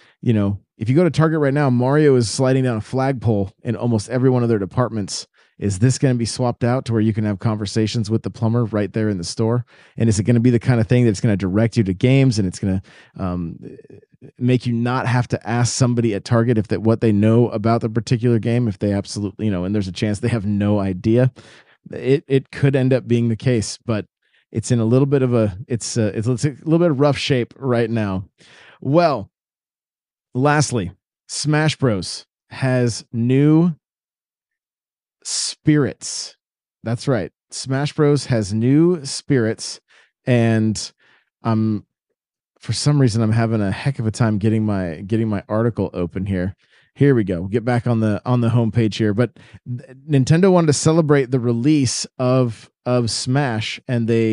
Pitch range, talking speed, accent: 110-130 Hz, 200 wpm, American